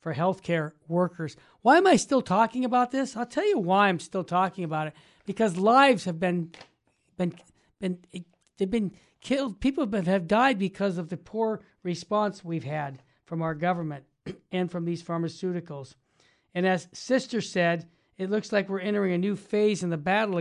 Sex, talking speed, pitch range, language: male, 180 wpm, 180-220 Hz, English